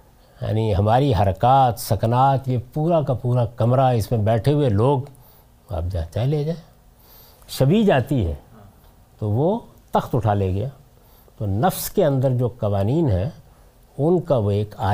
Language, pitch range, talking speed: Urdu, 105-160 Hz, 155 wpm